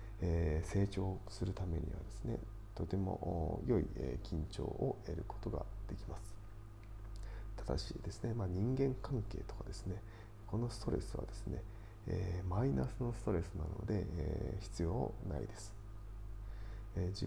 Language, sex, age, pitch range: Japanese, male, 40-59, 95-105 Hz